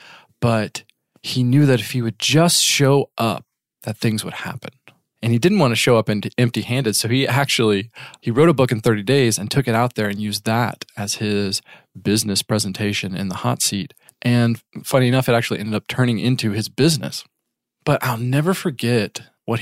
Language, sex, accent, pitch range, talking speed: English, male, American, 105-125 Hz, 195 wpm